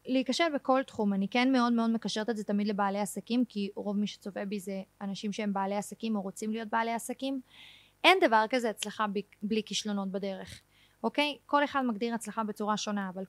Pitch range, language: 210-275 Hz, Hebrew